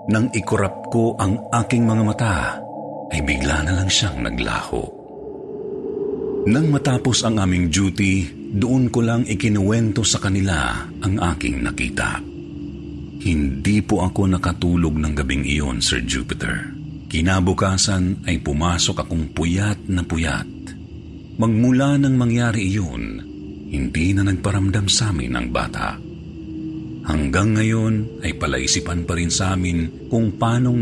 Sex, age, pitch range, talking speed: male, 40-59, 80-110 Hz, 125 wpm